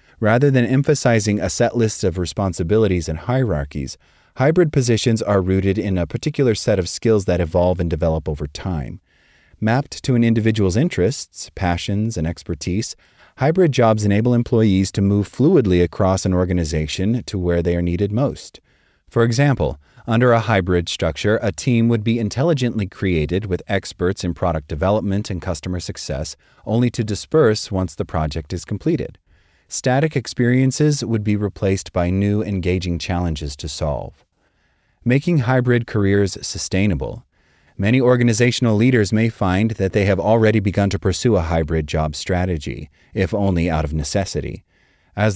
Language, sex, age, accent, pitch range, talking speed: English, male, 30-49, American, 90-115 Hz, 150 wpm